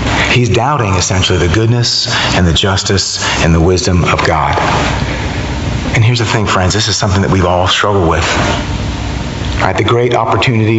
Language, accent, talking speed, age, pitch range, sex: English, American, 160 wpm, 40-59, 95-125 Hz, male